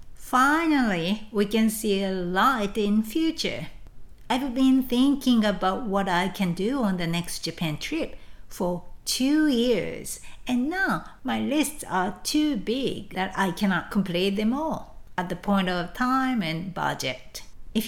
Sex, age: female, 50-69